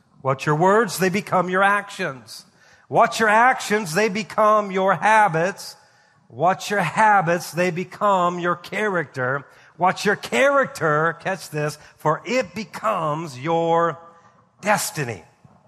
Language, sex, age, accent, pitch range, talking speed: English, male, 50-69, American, 155-210 Hz, 120 wpm